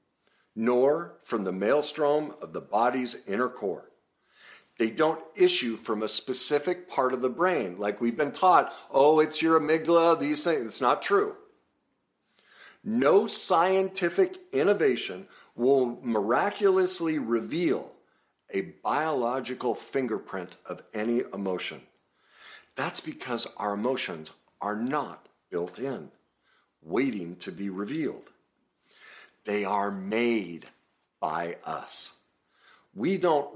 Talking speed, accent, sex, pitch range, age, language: 115 wpm, American, male, 105-155 Hz, 50-69, English